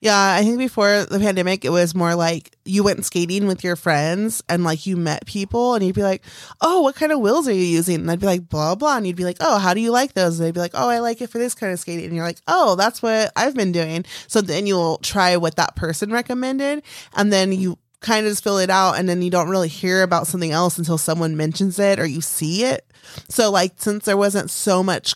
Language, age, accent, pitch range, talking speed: English, 20-39, American, 165-200 Hz, 265 wpm